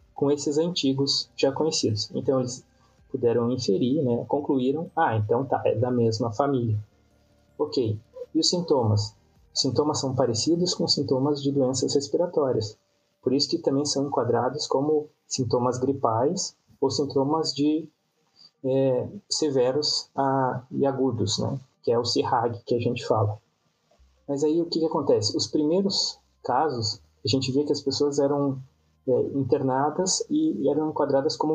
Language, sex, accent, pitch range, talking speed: English, male, Brazilian, 120-155 Hz, 150 wpm